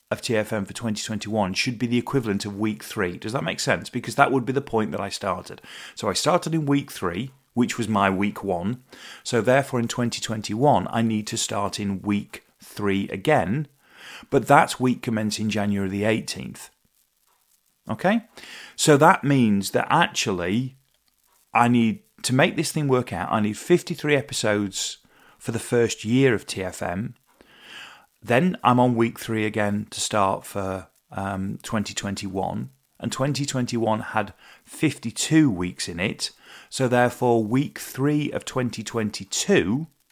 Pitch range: 105-130 Hz